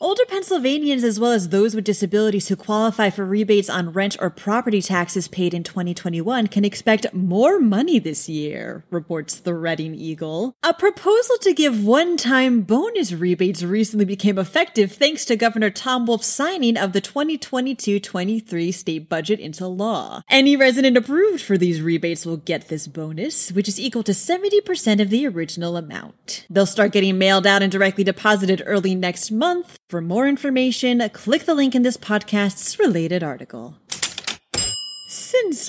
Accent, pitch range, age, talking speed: American, 180-245 Hz, 30-49, 160 wpm